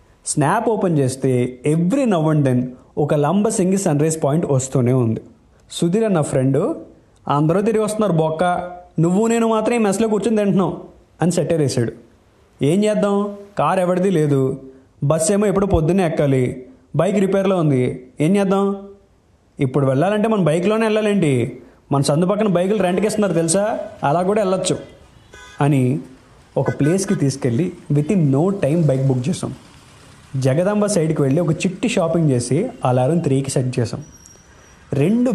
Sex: male